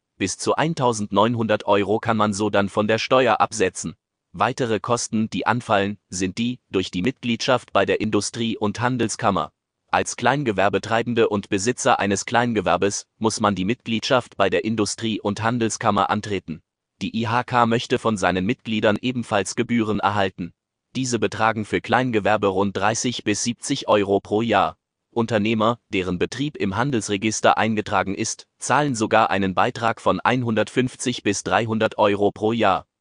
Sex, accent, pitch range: male, German, 100-120 Hz